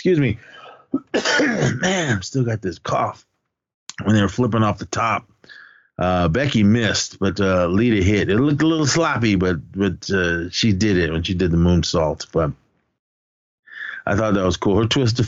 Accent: American